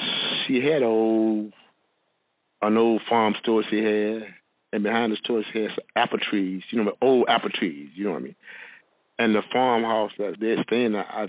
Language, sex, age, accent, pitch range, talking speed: English, male, 50-69, American, 95-115 Hz, 175 wpm